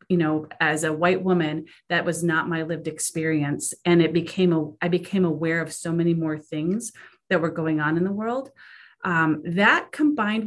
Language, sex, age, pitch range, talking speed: English, female, 30-49, 165-195 Hz, 195 wpm